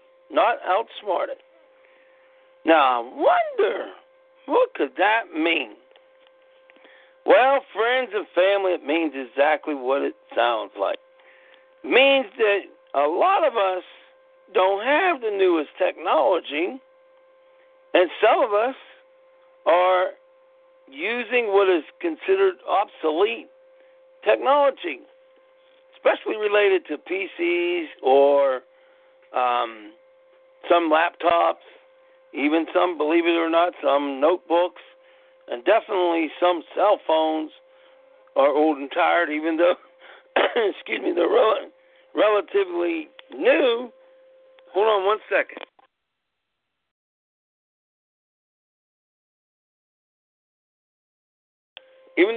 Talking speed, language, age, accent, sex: 90 wpm, English, 60-79, American, male